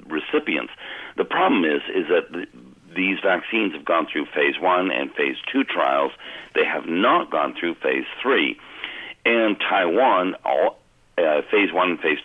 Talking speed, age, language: 160 wpm, 60-79, English